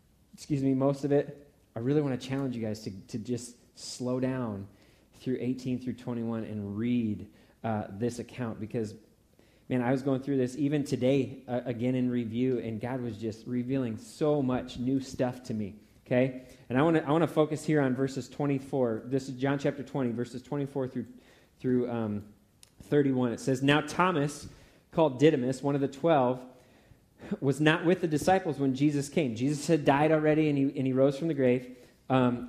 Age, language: 20-39, English